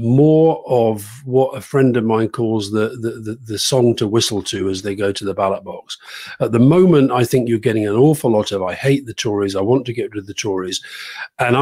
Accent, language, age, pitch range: British, English, 40-59, 110-145 Hz